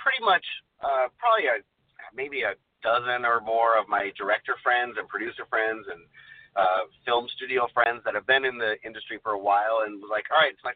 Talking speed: 205 wpm